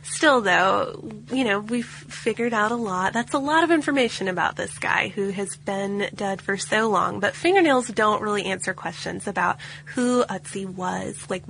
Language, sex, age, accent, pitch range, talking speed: English, female, 20-39, American, 190-230 Hz, 185 wpm